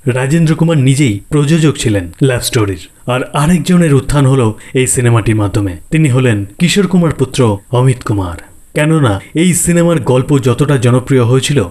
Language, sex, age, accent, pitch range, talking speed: Bengali, male, 30-49, native, 110-155 Hz, 145 wpm